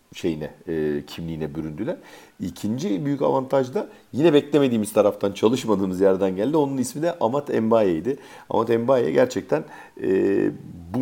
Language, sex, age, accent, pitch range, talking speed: Turkish, male, 50-69, native, 85-125 Hz, 130 wpm